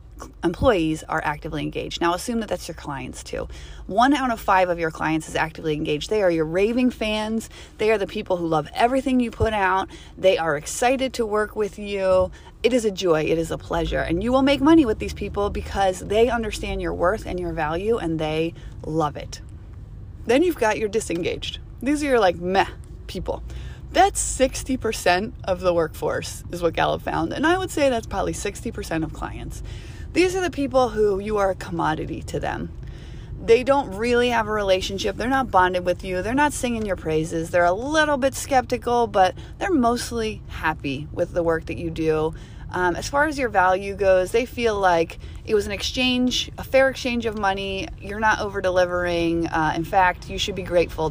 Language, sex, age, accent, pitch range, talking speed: English, female, 30-49, American, 160-235 Hz, 200 wpm